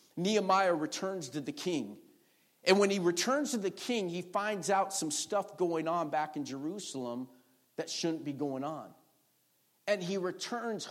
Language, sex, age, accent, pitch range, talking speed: English, male, 50-69, American, 150-205 Hz, 165 wpm